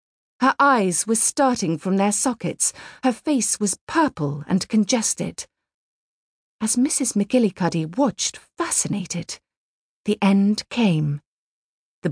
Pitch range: 180-255 Hz